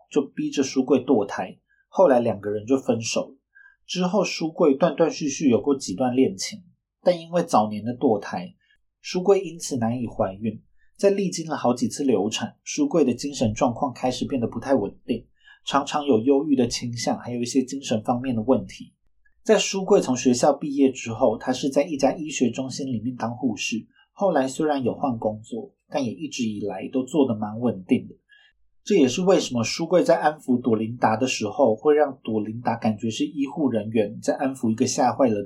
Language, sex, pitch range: Chinese, male, 120-175 Hz